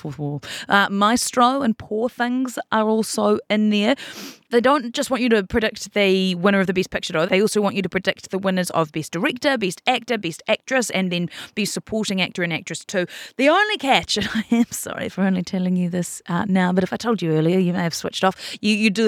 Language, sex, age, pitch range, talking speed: English, female, 30-49, 170-230 Hz, 230 wpm